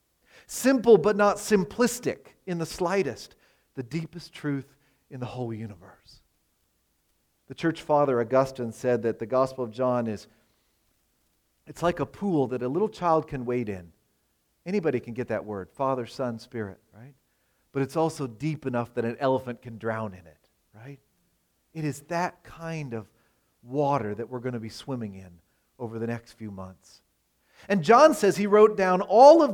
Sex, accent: male, American